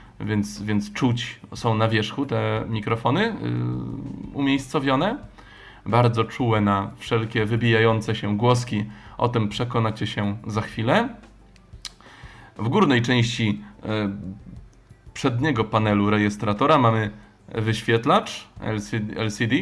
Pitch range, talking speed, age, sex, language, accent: 105-130 Hz, 95 wpm, 20-39, male, Polish, native